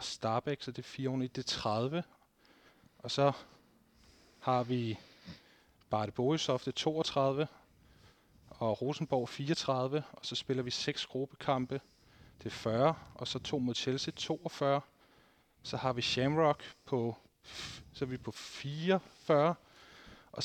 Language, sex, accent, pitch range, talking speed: Danish, male, native, 115-150 Hz, 140 wpm